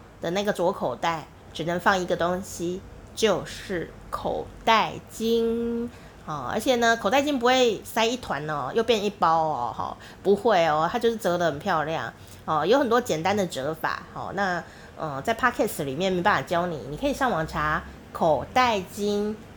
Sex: female